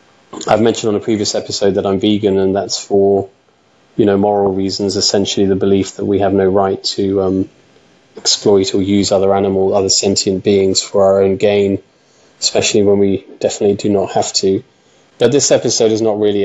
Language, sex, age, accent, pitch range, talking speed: English, male, 20-39, British, 95-105 Hz, 190 wpm